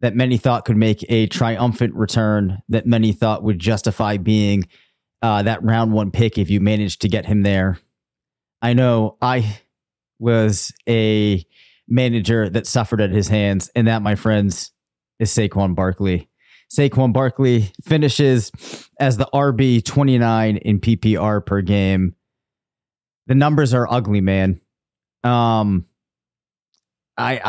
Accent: American